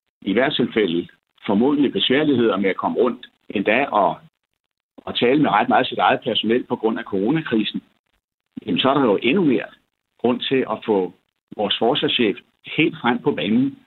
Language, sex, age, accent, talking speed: Danish, male, 60-79, native, 170 wpm